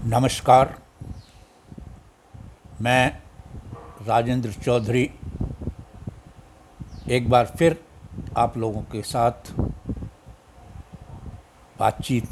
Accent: native